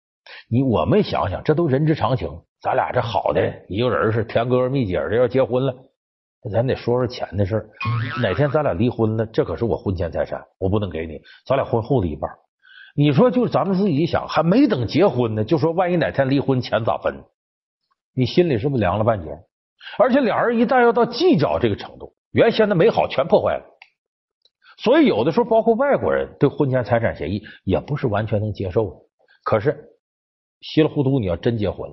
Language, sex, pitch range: Chinese, male, 110-170 Hz